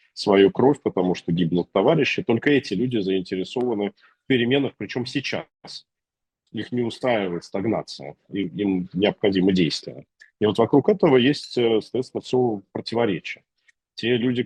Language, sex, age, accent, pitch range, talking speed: Russian, male, 40-59, native, 90-120 Hz, 135 wpm